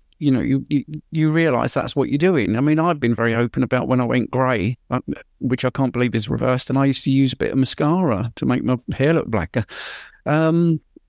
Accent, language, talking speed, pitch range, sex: British, English, 235 wpm, 130-175 Hz, male